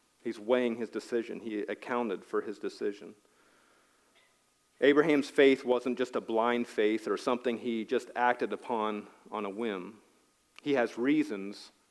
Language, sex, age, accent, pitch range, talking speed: English, male, 40-59, American, 110-135 Hz, 140 wpm